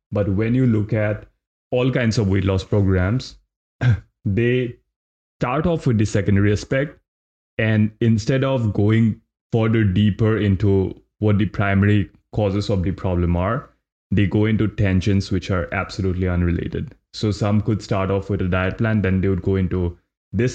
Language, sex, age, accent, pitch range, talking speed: English, male, 20-39, Indian, 95-115 Hz, 165 wpm